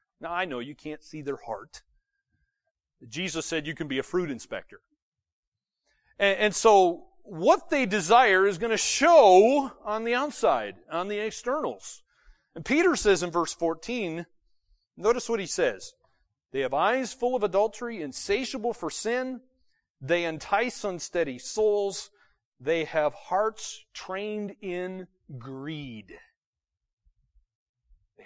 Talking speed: 130 wpm